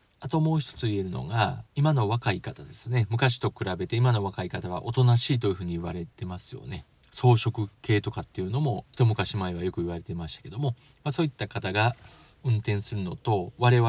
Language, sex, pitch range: Japanese, male, 100-130 Hz